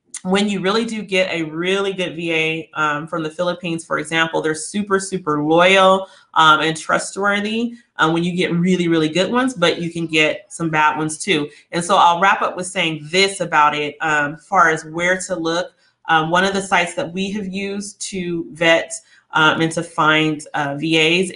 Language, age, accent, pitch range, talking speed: English, 30-49, American, 160-195 Hz, 200 wpm